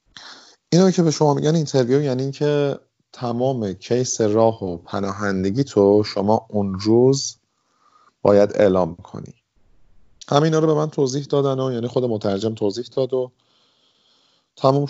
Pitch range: 110-135 Hz